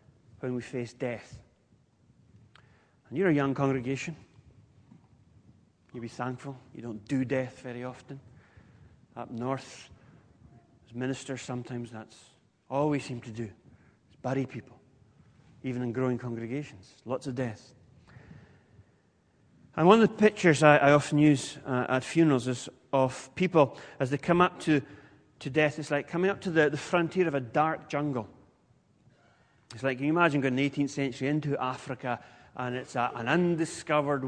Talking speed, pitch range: 155 wpm, 125-150 Hz